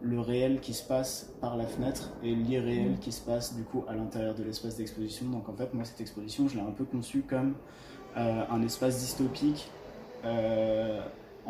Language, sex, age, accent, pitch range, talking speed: French, male, 20-39, French, 110-125 Hz, 195 wpm